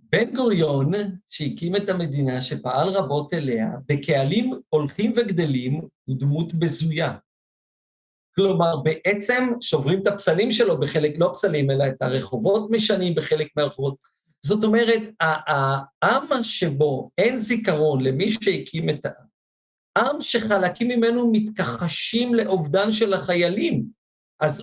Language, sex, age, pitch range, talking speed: Hebrew, male, 50-69, 155-220 Hz, 115 wpm